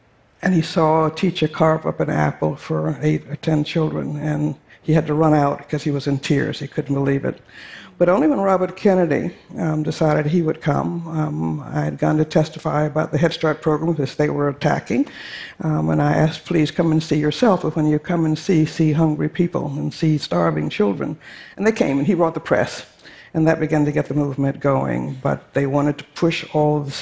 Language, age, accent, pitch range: Chinese, 60-79, American, 145-170 Hz